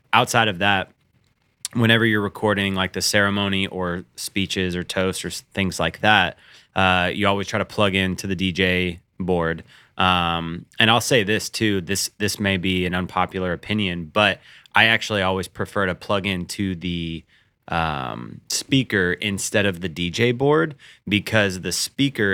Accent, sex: American, male